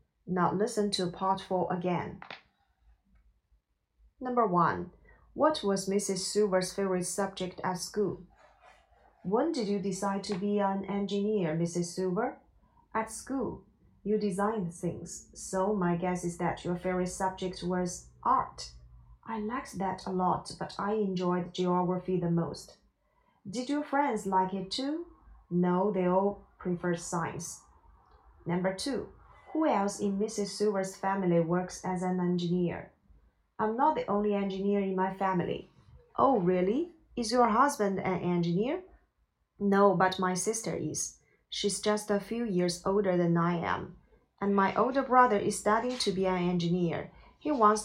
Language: Chinese